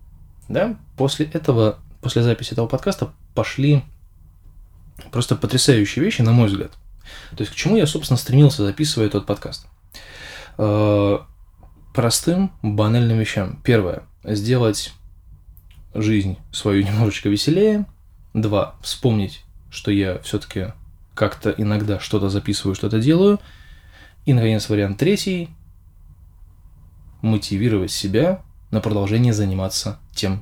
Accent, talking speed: native, 110 wpm